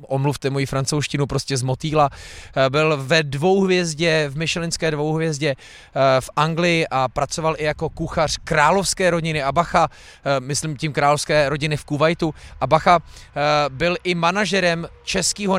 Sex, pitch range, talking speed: male, 130-165 Hz, 125 wpm